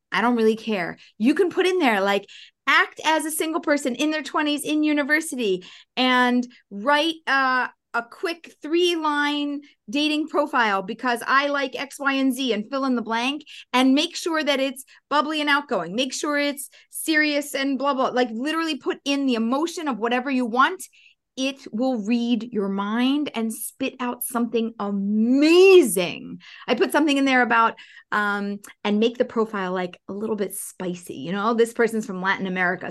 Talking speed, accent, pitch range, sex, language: 180 wpm, American, 220-300 Hz, female, English